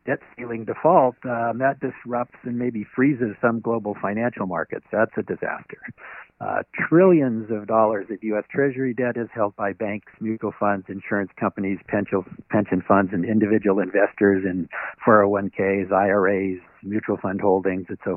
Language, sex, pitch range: English, male, 100-120 Hz